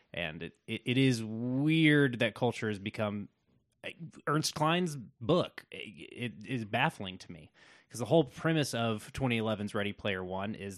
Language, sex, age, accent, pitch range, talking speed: English, male, 20-39, American, 105-140 Hz, 160 wpm